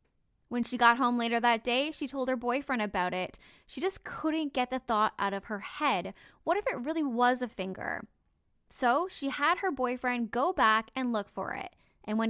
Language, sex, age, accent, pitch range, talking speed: English, female, 10-29, American, 220-290 Hz, 210 wpm